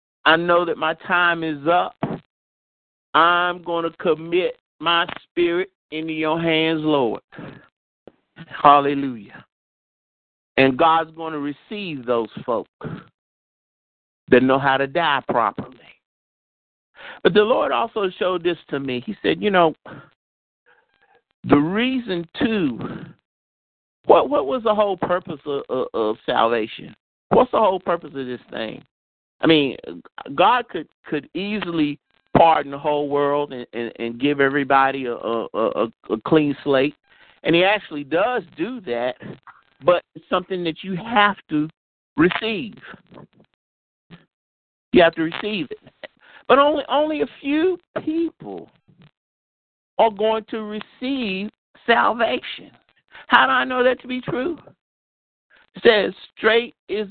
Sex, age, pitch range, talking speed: male, 50-69, 145-210 Hz, 130 wpm